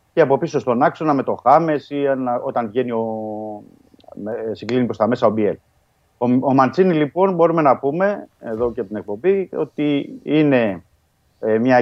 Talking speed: 155 wpm